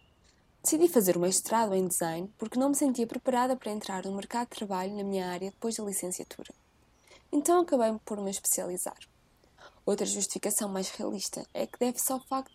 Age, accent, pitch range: 20-39, Brazilian, 195-260 Hz